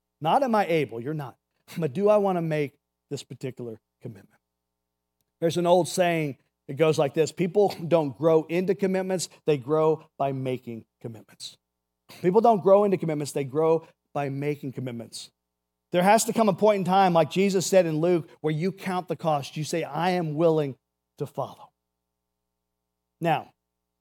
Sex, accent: male, American